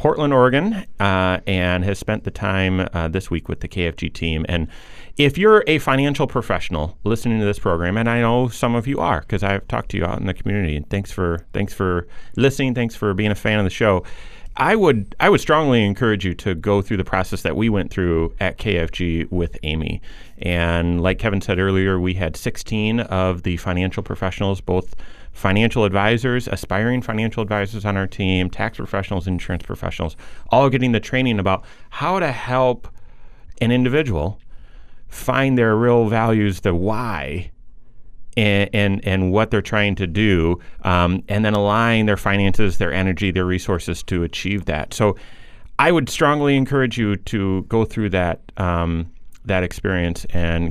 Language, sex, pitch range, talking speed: English, male, 90-115 Hz, 175 wpm